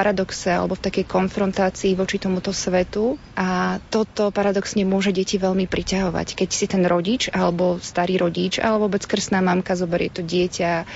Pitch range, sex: 180-195 Hz, female